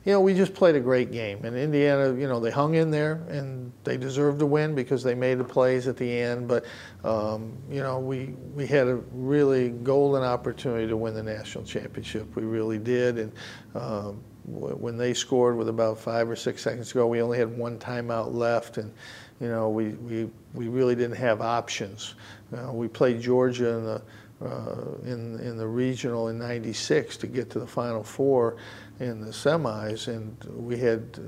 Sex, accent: male, American